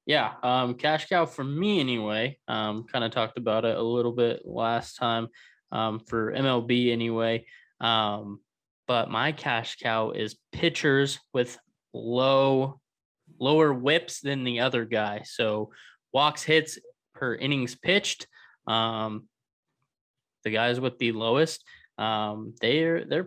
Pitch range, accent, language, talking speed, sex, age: 115-150 Hz, American, English, 135 wpm, male, 20-39